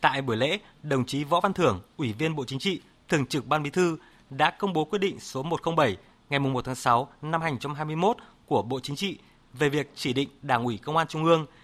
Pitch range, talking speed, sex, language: 130-165 Hz, 230 wpm, male, Vietnamese